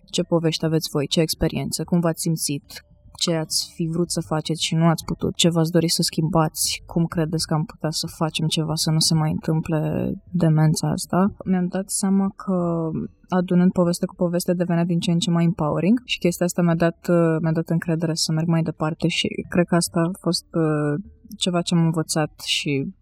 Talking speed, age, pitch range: 200 wpm, 20-39, 160-180 Hz